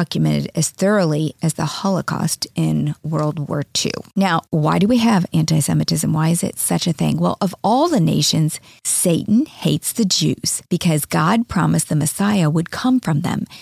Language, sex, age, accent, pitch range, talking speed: English, female, 40-59, American, 160-220 Hz, 175 wpm